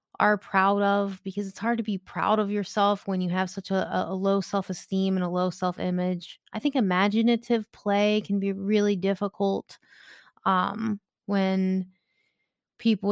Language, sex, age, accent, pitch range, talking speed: English, female, 20-39, American, 185-210 Hz, 165 wpm